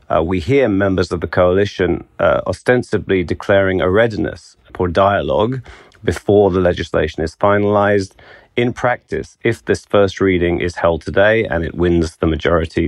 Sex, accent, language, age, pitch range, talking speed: male, British, English, 30-49, 90-105 Hz, 155 wpm